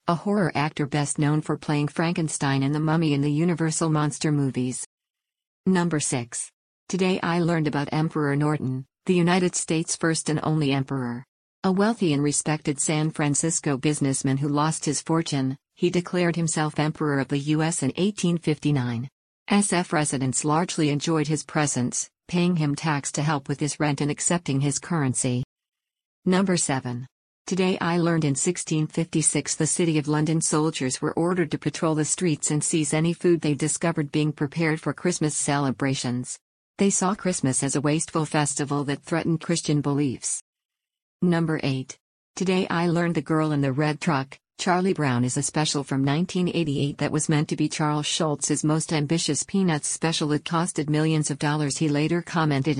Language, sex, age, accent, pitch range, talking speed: English, female, 50-69, American, 145-165 Hz, 165 wpm